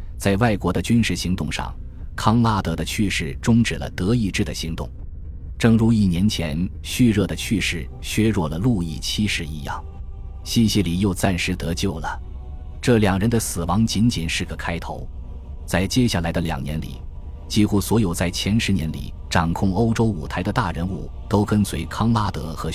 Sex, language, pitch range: male, Chinese, 80-105 Hz